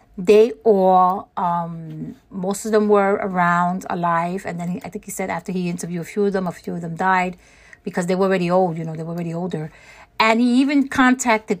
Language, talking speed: English, 215 wpm